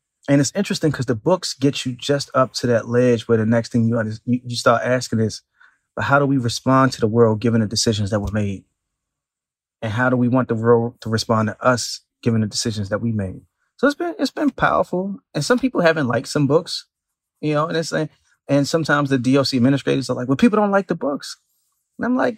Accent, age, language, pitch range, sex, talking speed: American, 30-49, English, 115-145 Hz, male, 230 wpm